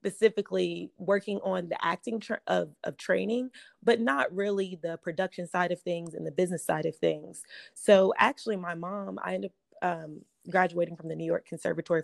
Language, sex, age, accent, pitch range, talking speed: English, female, 20-39, American, 170-195 Hz, 180 wpm